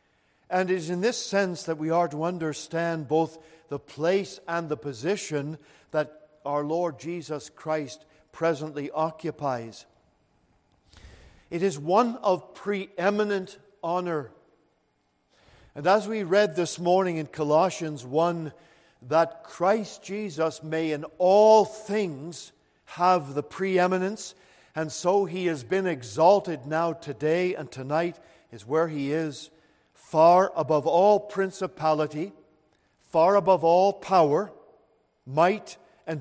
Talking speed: 120 wpm